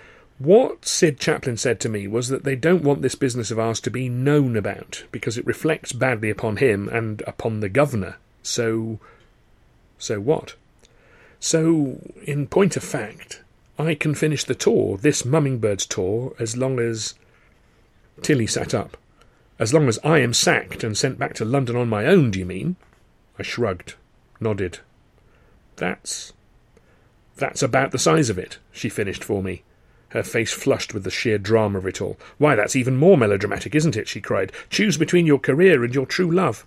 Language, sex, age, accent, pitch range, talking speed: English, male, 40-59, British, 110-150 Hz, 180 wpm